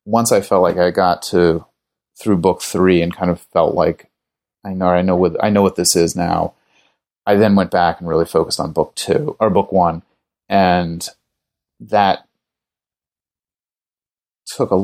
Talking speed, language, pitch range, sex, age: 175 wpm, English, 90-100 Hz, male, 30-49